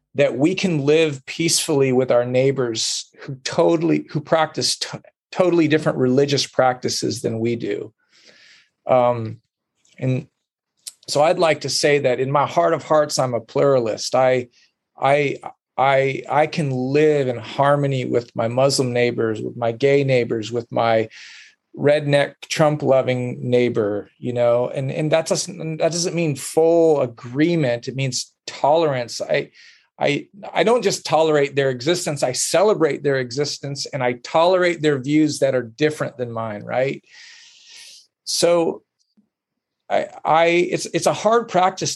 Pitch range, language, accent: 130-165 Hz, English, American